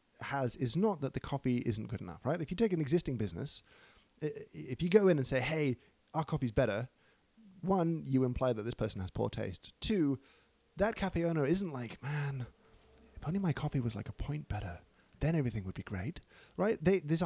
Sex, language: male, English